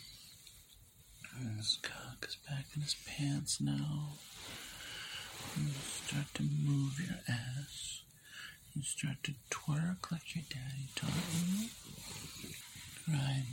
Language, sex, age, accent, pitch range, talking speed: English, male, 50-69, American, 115-145 Hz, 120 wpm